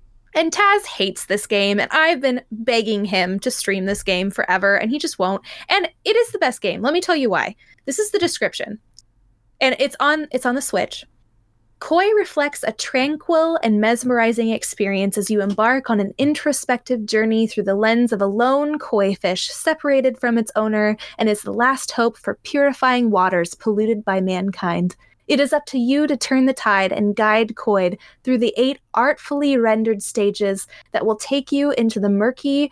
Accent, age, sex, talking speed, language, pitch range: American, 10-29, female, 190 wpm, English, 200-280 Hz